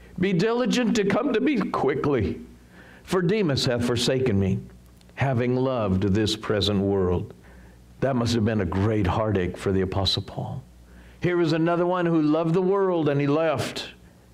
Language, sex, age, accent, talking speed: English, male, 60-79, American, 165 wpm